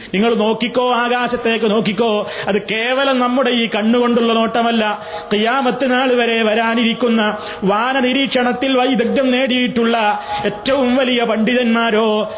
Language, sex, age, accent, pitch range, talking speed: Malayalam, male, 30-49, native, 215-245 Hz, 90 wpm